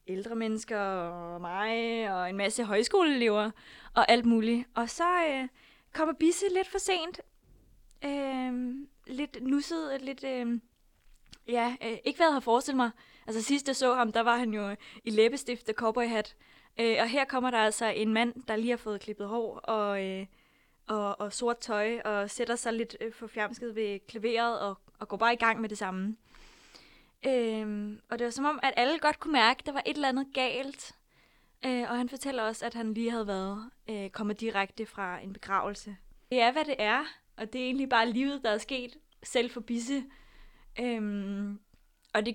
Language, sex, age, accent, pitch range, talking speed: Danish, female, 20-39, native, 210-255 Hz, 190 wpm